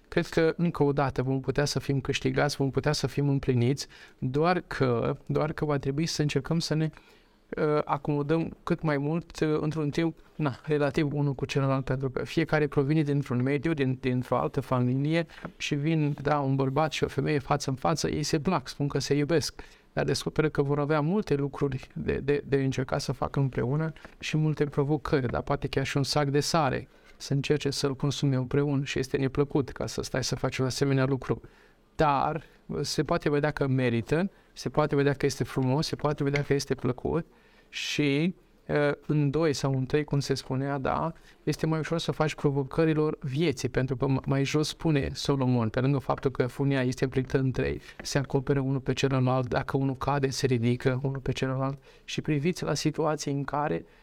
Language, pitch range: Romanian, 135-150 Hz